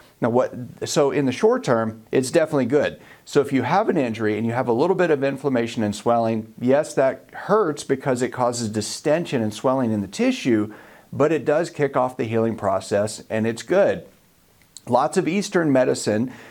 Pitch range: 115-150 Hz